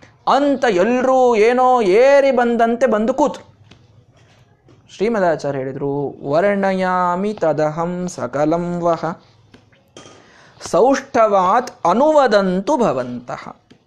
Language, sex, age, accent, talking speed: Kannada, male, 20-39, native, 45 wpm